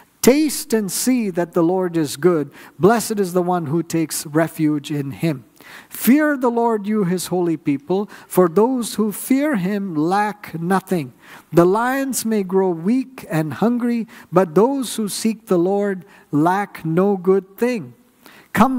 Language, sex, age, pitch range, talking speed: English, male, 50-69, 155-200 Hz, 155 wpm